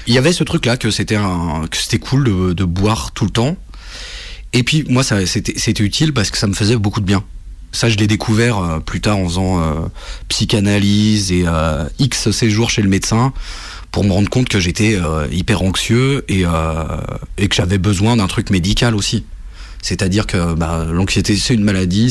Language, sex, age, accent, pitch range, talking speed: French, male, 30-49, French, 90-115 Hz, 200 wpm